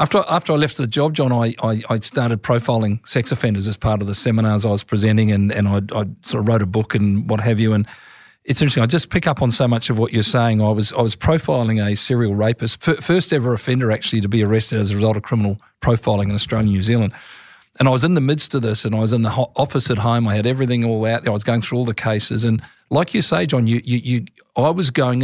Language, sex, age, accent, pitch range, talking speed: English, male, 40-59, Australian, 110-130 Hz, 275 wpm